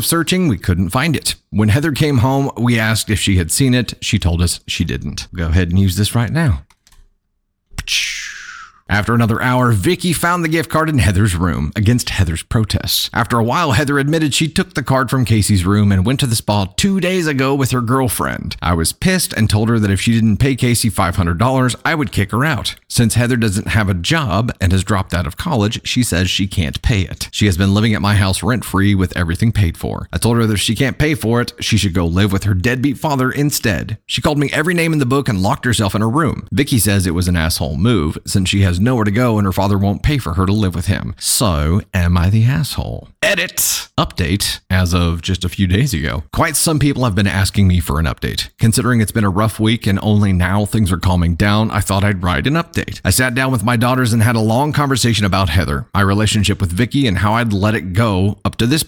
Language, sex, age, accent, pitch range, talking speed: English, male, 30-49, American, 95-125 Hz, 245 wpm